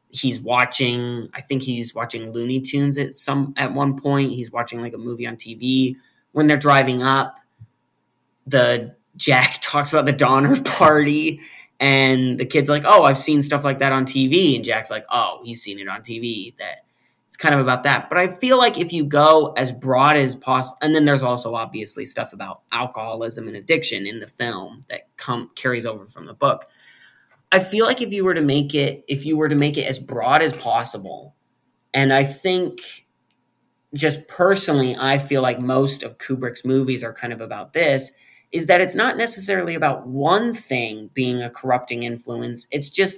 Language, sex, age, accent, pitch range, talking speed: English, male, 20-39, American, 120-150 Hz, 195 wpm